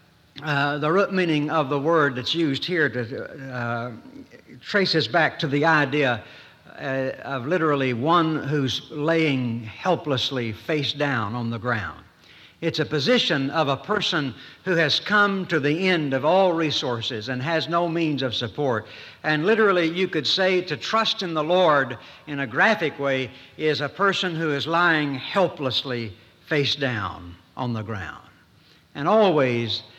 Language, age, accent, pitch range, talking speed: English, 60-79, American, 130-170 Hz, 155 wpm